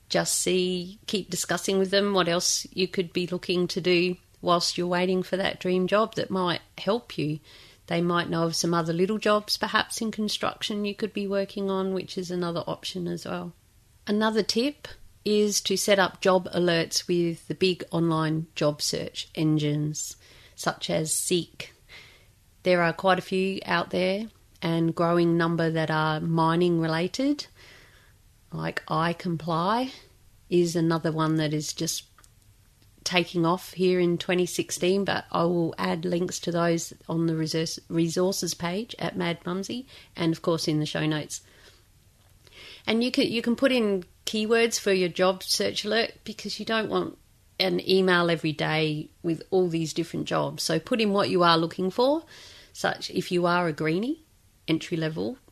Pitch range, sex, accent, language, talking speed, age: 165-195 Hz, female, Australian, English, 170 wpm, 40-59